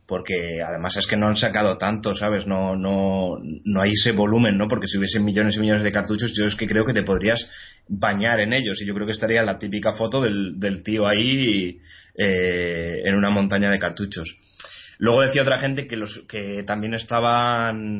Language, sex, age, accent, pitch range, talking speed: Spanish, male, 20-39, Spanish, 100-115 Hz, 205 wpm